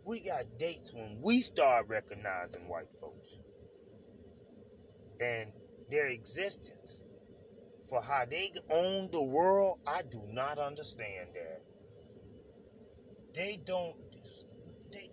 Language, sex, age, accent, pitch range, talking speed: English, male, 30-49, American, 175-220 Hz, 105 wpm